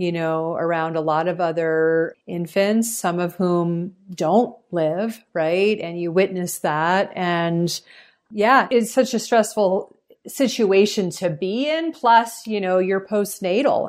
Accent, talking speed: American, 145 wpm